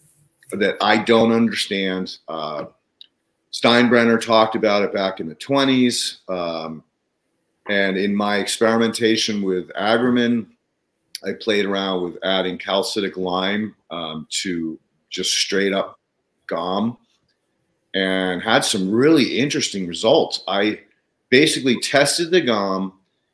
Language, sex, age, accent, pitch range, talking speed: English, male, 40-59, American, 95-115 Hz, 115 wpm